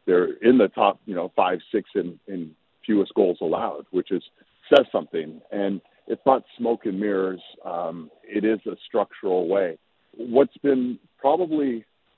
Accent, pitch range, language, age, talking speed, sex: American, 90-110 Hz, English, 50-69, 160 wpm, male